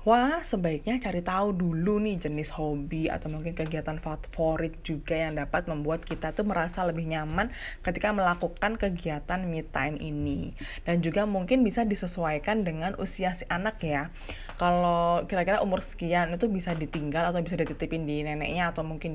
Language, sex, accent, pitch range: Indonesian, female, native, 160-225 Hz